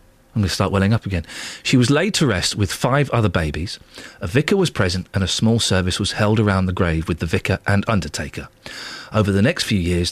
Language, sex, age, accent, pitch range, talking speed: English, male, 40-59, British, 95-125 Hz, 230 wpm